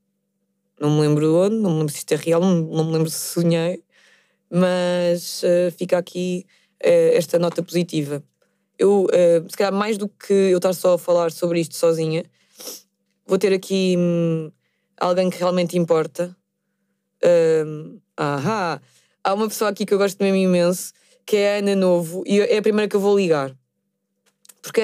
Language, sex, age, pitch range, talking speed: Portuguese, female, 20-39, 155-205 Hz, 175 wpm